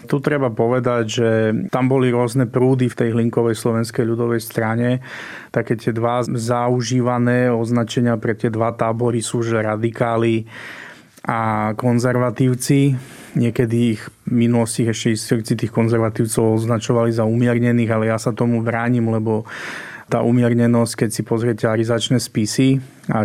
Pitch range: 115-125 Hz